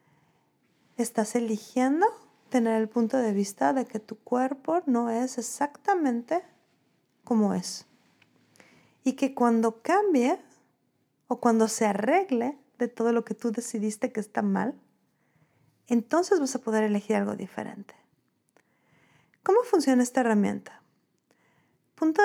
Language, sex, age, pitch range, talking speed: Spanish, female, 40-59, 220-275 Hz, 120 wpm